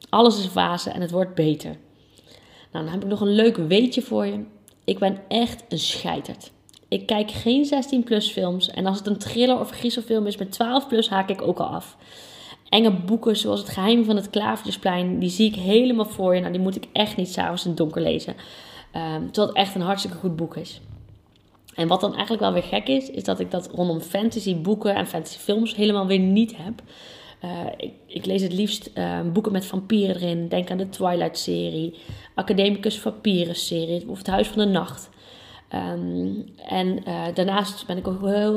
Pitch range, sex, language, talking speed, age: 170-215 Hz, female, Dutch, 200 wpm, 20-39